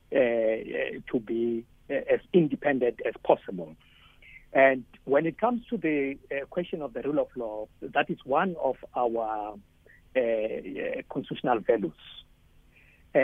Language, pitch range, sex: English, 110-140 Hz, male